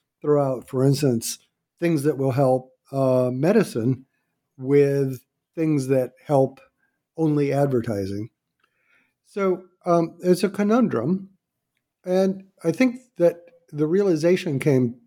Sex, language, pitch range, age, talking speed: male, English, 120-165 Hz, 50-69, 110 wpm